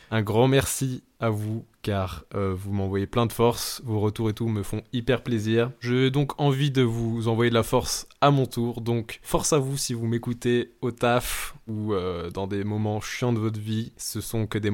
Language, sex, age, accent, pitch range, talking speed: French, male, 20-39, French, 110-135 Hz, 220 wpm